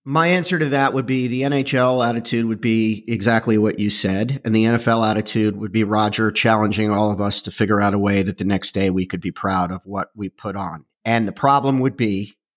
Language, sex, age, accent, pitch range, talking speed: English, male, 50-69, American, 105-140 Hz, 235 wpm